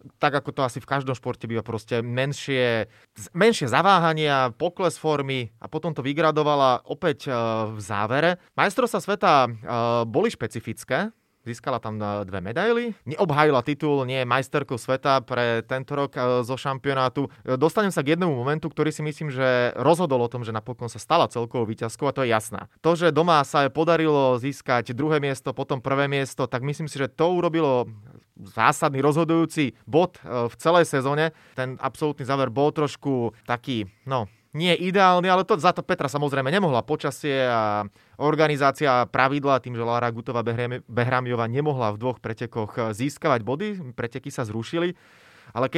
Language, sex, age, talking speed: Slovak, male, 30-49, 155 wpm